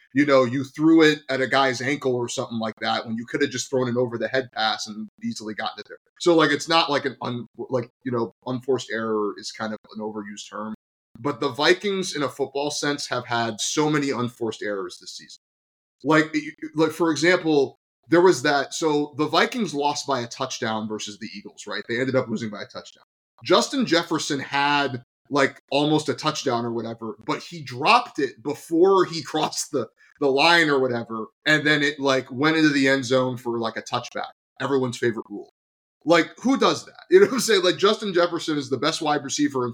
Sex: male